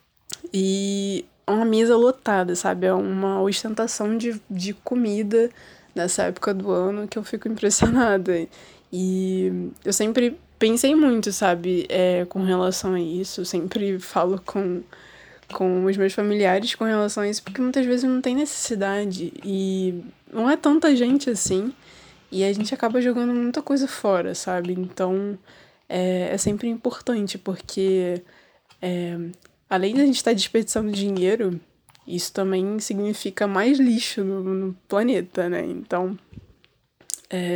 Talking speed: 135 wpm